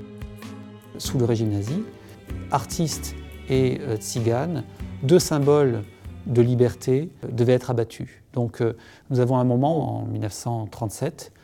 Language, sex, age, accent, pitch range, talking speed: French, male, 40-59, French, 110-130 Hz, 125 wpm